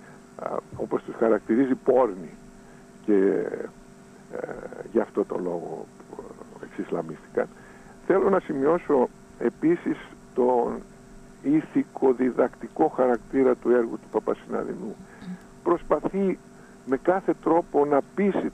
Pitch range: 120-200 Hz